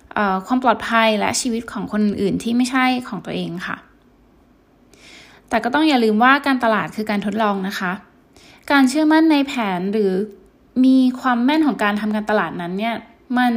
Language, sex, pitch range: Thai, female, 205-265 Hz